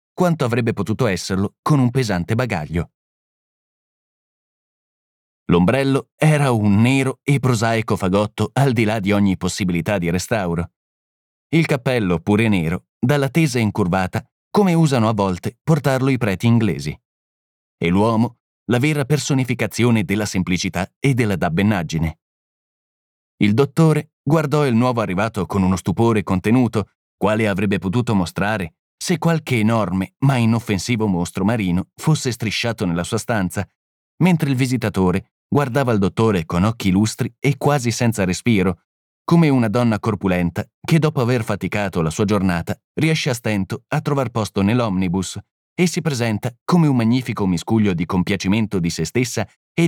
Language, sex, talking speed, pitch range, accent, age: Italian, male, 140 wpm, 95-135 Hz, native, 30-49